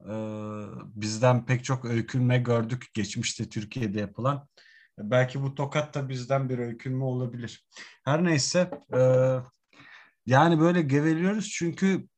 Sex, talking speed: male, 110 wpm